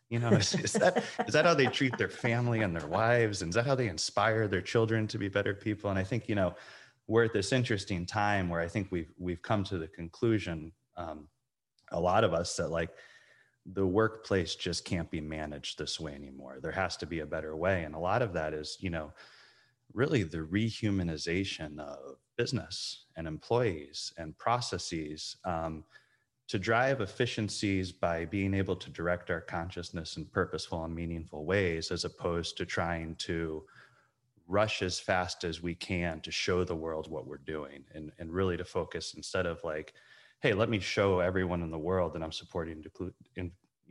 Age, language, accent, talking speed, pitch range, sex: 30-49, English, American, 195 wpm, 80-105 Hz, male